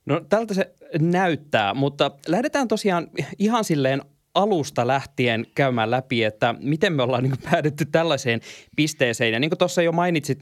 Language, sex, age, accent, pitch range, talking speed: Finnish, male, 20-39, native, 120-150 Hz, 150 wpm